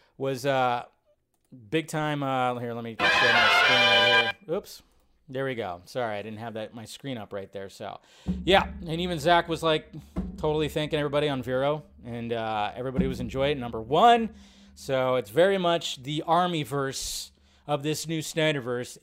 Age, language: 30-49, English